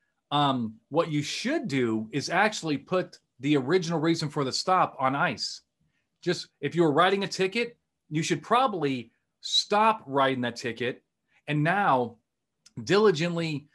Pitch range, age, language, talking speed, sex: 135-180 Hz, 40-59, English, 145 wpm, male